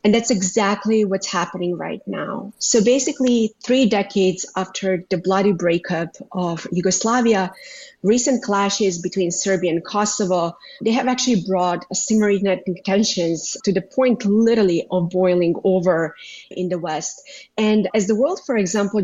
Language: English